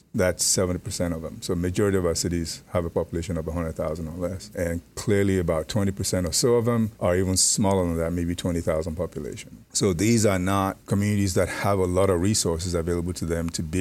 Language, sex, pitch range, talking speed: English, male, 85-95 Hz, 210 wpm